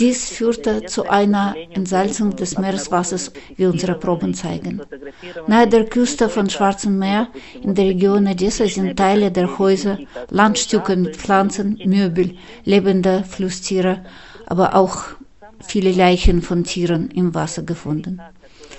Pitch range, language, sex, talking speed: 175-205 Hz, German, female, 130 wpm